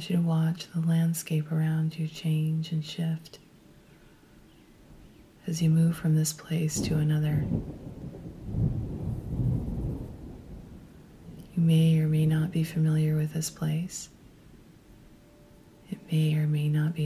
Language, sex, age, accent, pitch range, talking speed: English, female, 30-49, American, 155-170 Hz, 115 wpm